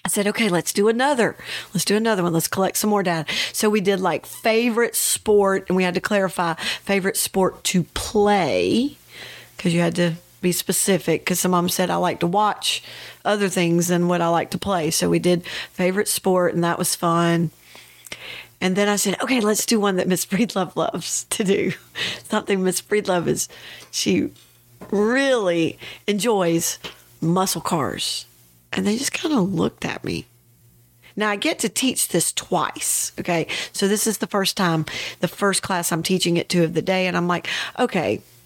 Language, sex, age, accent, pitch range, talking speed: English, female, 40-59, American, 165-205 Hz, 185 wpm